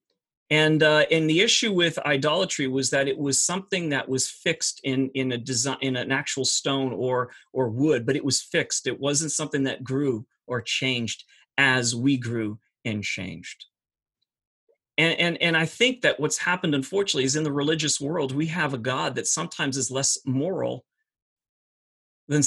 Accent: American